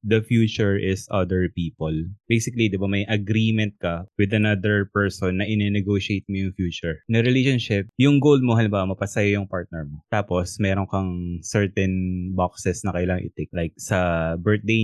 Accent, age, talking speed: native, 20-39, 160 wpm